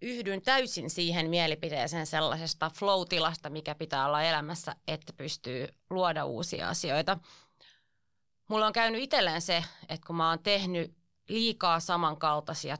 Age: 30-49